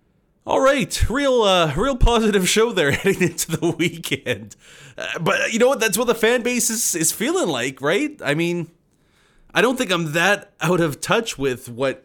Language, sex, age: English, male, 20-39